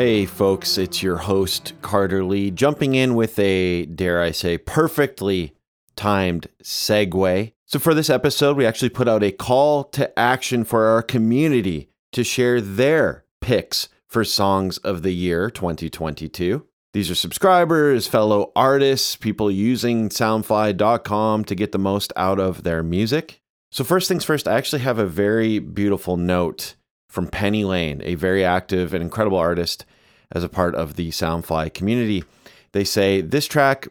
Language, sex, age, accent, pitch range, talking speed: English, male, 30-49, American, 90-115 Hz, 155 wpm